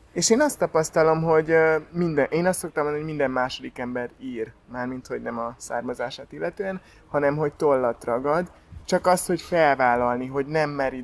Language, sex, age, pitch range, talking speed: Hungarian, male, 20-39, 135-170 Hz, 175 wpm